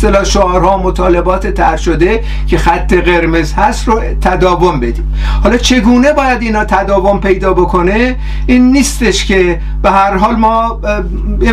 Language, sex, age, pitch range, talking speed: Persian, male, 50-69, 175-215 Hz, 145 wpm